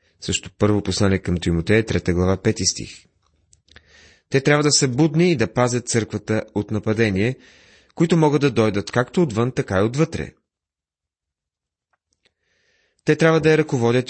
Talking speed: 145 wpm